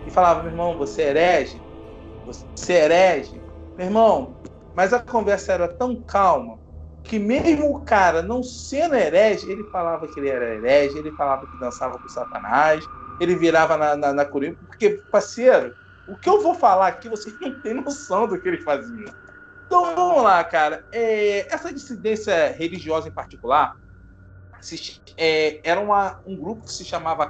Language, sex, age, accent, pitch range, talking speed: Portuguese, male, 40-59, Brazilian, 150-245 Hz, 175 wpm